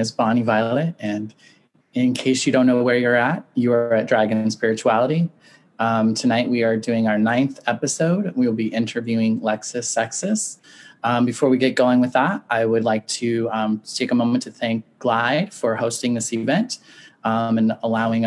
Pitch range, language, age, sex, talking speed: 115-130 Hz, English, 20-39, male, 185 wpm